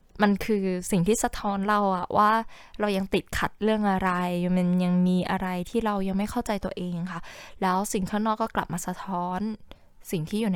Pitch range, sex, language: 170-205 Hz, female, Thai